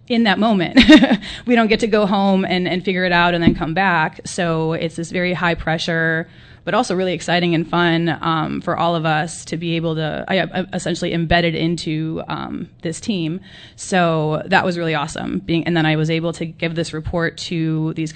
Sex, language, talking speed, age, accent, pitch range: female, English, 210 wpm, 20-39, American, 165-200 Hz